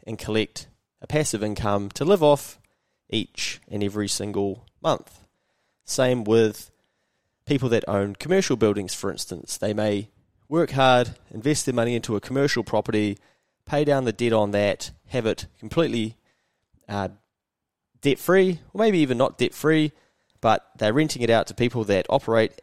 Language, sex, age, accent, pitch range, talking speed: English, male, 20-39, Australian, 105-135 Hz, 160 wpm